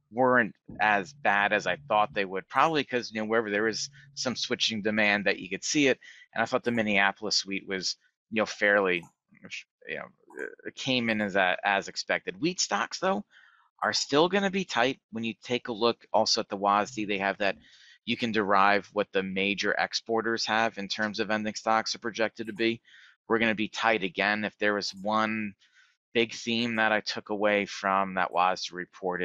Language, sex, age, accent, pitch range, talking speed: English, male, 30-49, American, 95-115 Hz, 205 wpm